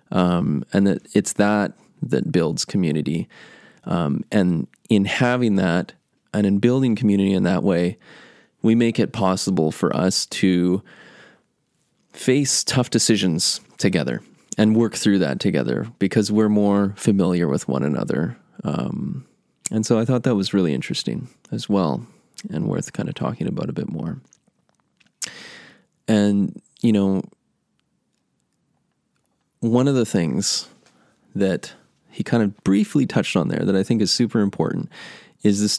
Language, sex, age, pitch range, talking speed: English, male, 20-39, 95-115 Hz, 145 wpm